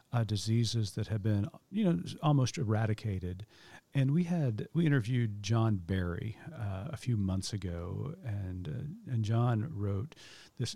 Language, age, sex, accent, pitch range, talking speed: English, 40-59, male, American, 100-130 Hz, 150 wpm